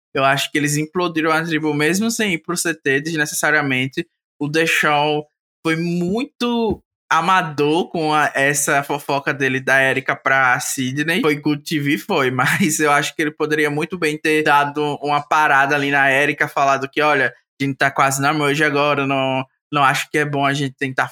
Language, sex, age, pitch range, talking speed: Portuguese, male, 20-39, 140-175 Hz, 190 wpm